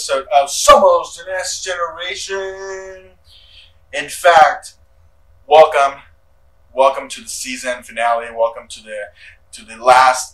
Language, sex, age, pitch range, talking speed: English, male, 20-39, 85-135 Hz, 110 wpm